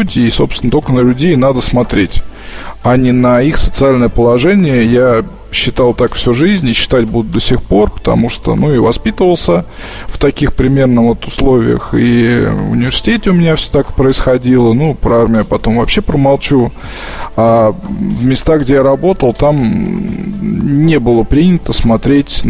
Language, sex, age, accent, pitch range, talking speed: Russian, male, 20-39, native, 120-155 Hz, 160 wpm